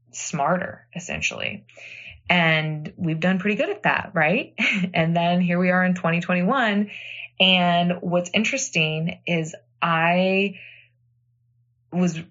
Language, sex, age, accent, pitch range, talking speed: English, female, 20-39, American, 155-180 Hz, 110 wpm